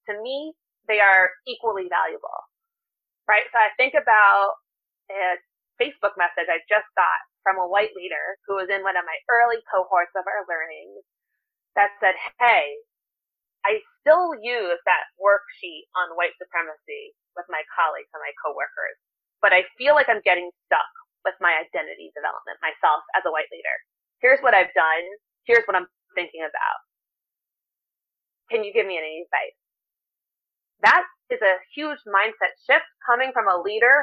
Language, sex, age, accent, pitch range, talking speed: English, female, 20-39, American, 185-295 Hz, 160 wpm